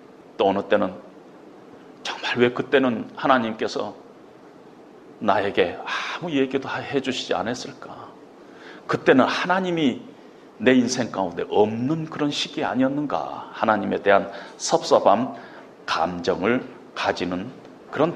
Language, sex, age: Korean, male, 40-59